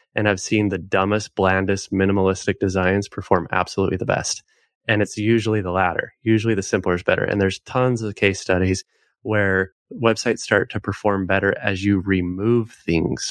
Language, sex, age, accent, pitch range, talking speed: English, male, 20-39, American, 95-105 Hz, 170 wpm